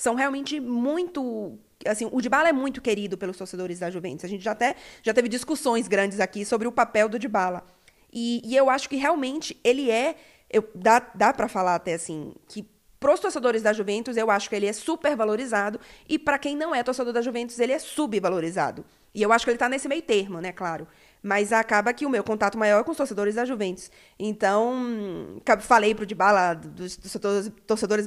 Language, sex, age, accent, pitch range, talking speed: Portuguese, female, 20-39, Brazilian, 195-240 Hz, 205 wpm